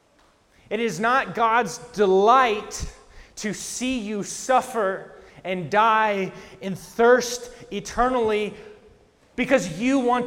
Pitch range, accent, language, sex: 195-240 Hz, American, English, male